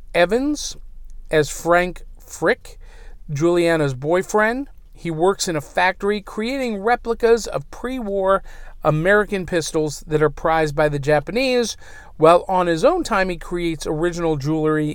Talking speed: 130 wpm